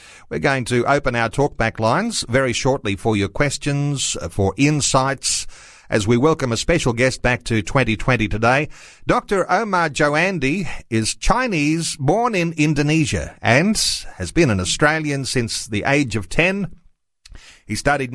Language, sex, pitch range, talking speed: English, male, 115-155 Hz, 145 wpm